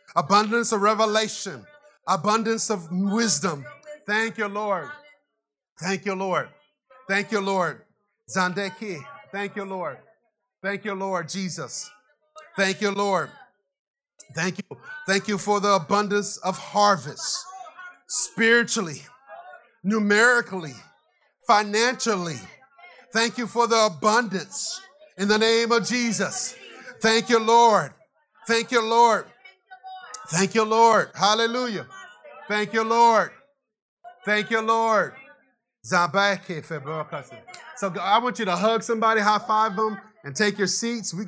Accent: American